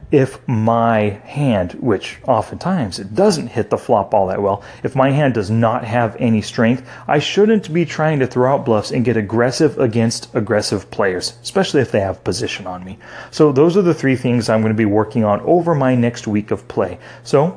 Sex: male